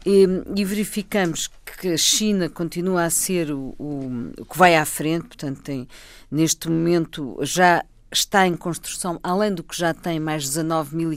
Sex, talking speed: female, 155 wpm